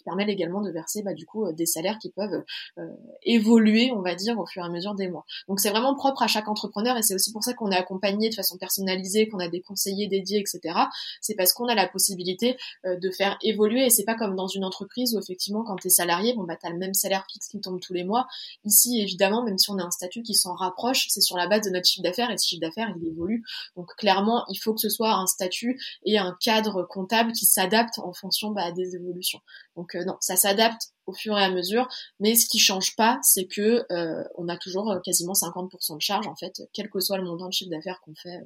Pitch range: 180-220 Hz